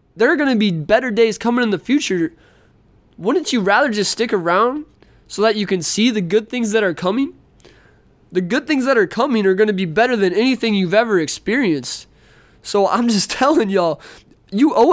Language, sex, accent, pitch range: English, male, American, 175-230 Hz